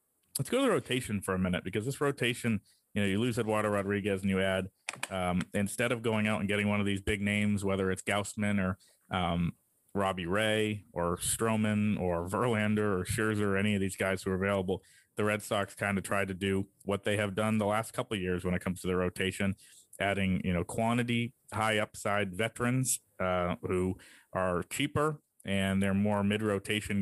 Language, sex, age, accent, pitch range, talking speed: English, male, 30-49, American, 95-105 Hz, 205 wpm